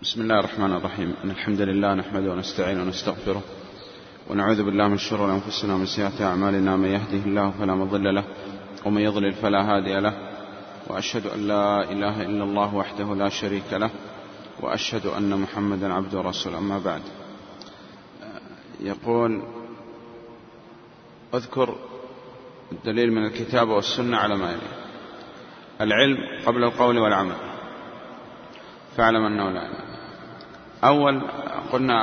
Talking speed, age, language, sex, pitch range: 120 wpm, 30-49, Arabic, male, 100-120 Hz